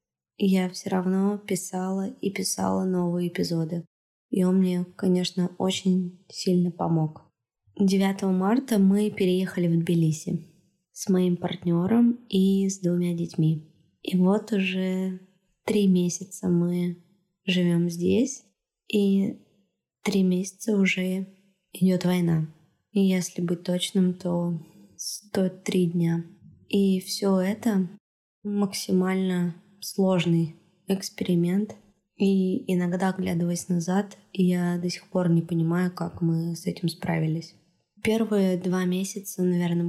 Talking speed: 115 wpm